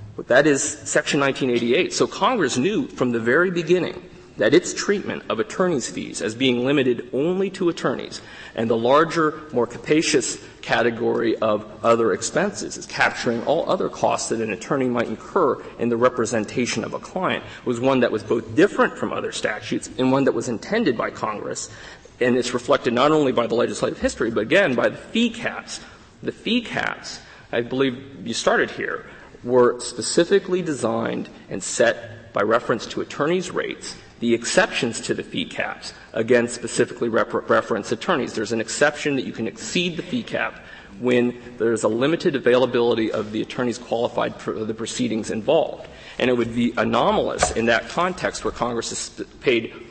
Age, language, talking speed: 40-59, English, 170 wpm